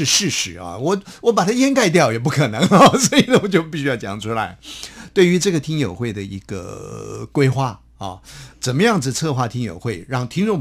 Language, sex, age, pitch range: Chinese, male, 50-69, 115-170 Hz